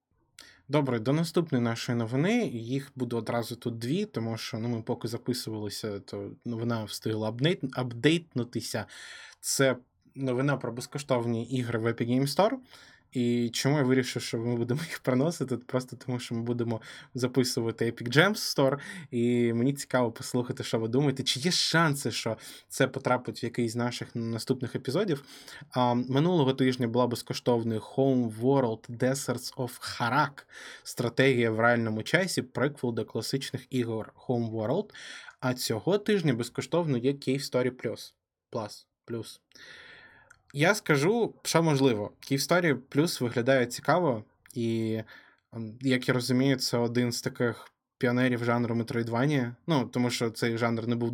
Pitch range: 115-135 Hz